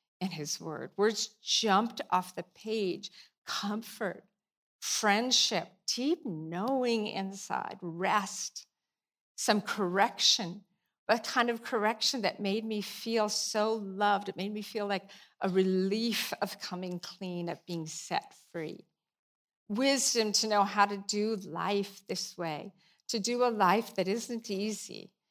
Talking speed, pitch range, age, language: 135 wpm, 185-215 Hz, 50-69, English